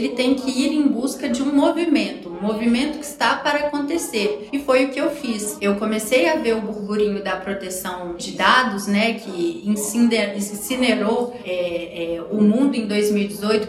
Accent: Brazilian